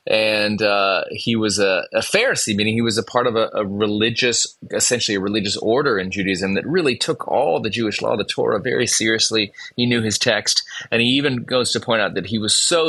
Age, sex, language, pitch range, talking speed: 30-49, male, English, 95-115 Hz, 230 wpm